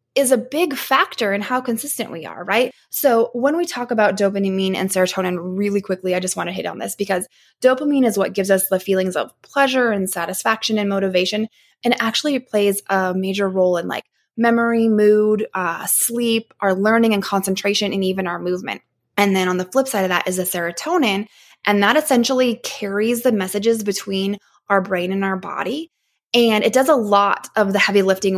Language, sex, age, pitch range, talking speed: English, female, 20-39, 190-230 Hz, 195 wpm